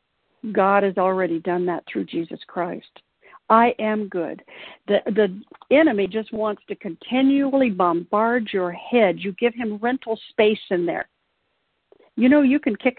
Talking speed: 150 wpm